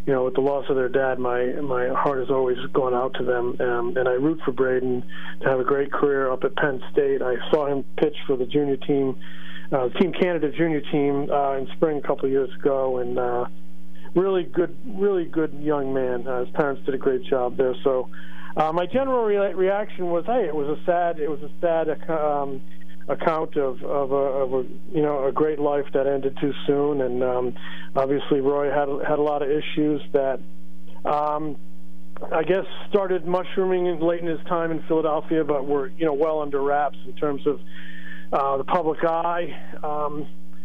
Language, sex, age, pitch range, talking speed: English, male, 40-59, 130-165 Hz, 205 wpm